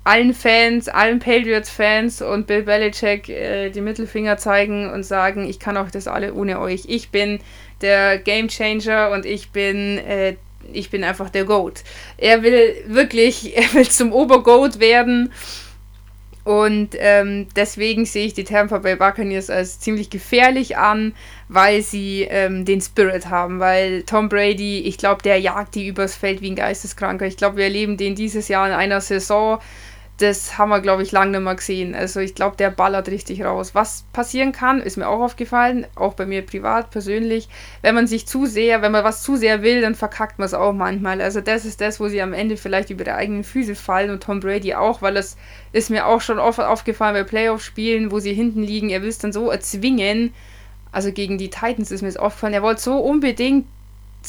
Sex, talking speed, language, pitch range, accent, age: female, 195 wpm, German, 195-225 Hz, German, 20-39